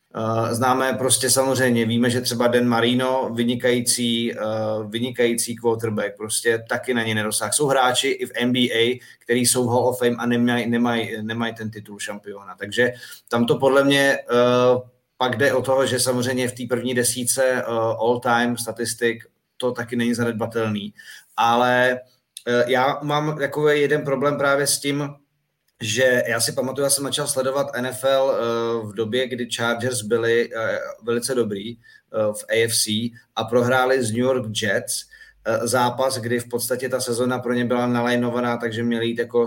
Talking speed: 160 wpm